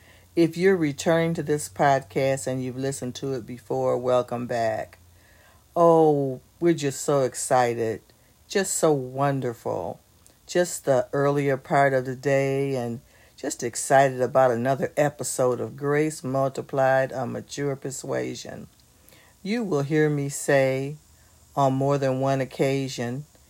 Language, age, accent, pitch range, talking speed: English, 50-69, American, 125-150 Hz, 130 wpm